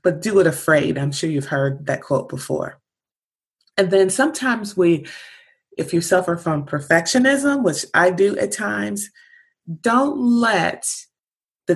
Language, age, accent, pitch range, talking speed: English, 30-49, American, 145-190 Hz, 145 wpm